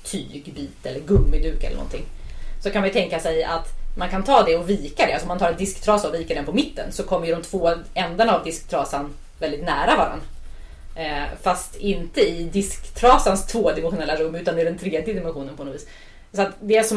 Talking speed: 205 wpm